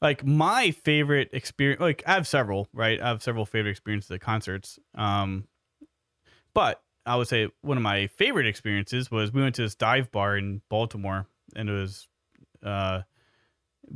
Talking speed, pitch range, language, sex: 170 wpm, 100-125 Hz, English, male